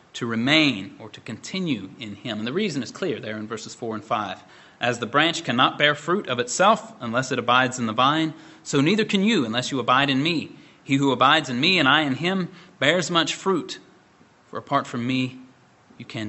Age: 30-49